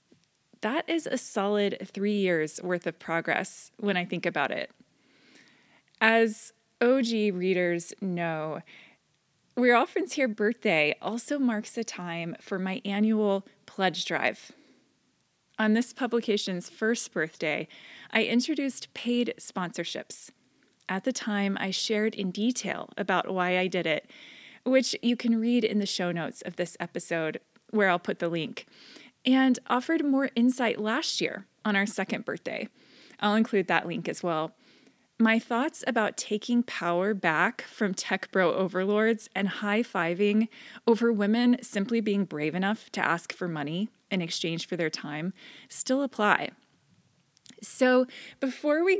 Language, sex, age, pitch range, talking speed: English, female, 20-39, 180-235 Hz, 145 wpm